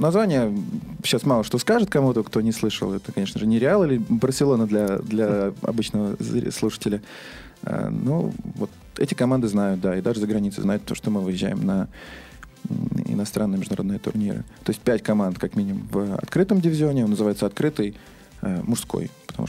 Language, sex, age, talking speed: Russian, male, 20-39, 165 wpm